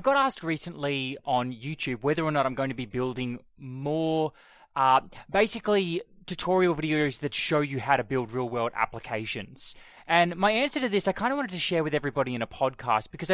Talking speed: 200 wpm